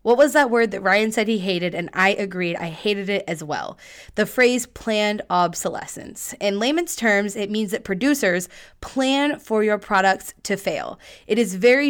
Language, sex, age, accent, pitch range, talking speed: English, female, 20-39, American, 185-235 Hz, 185 wpm